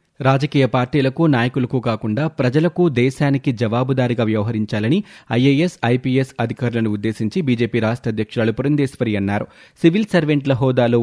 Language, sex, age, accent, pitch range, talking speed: Telugu, male, 30-49, native, 115-145 Hz, 110 wpm